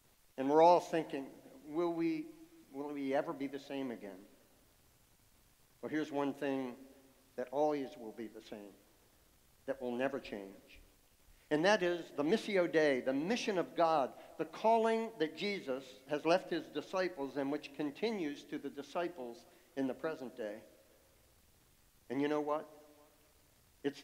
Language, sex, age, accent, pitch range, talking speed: English, male, 60-79, American, 135-180 Hz, 145 wpm